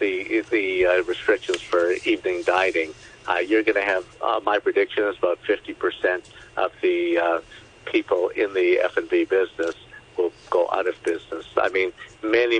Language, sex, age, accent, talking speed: English, male, 50-69, American, 160 wpm